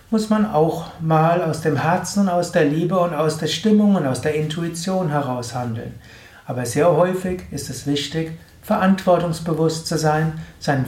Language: German